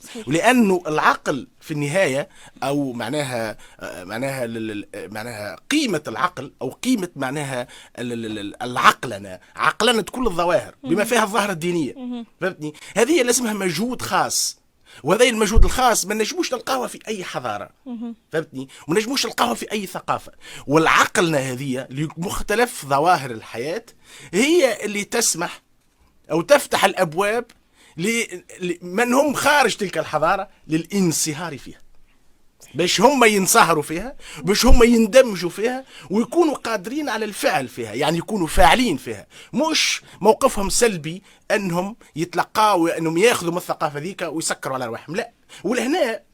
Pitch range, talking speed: 155-235 Hz, 120 wpm